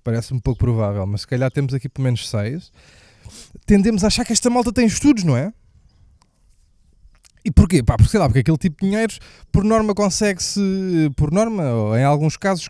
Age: 20-39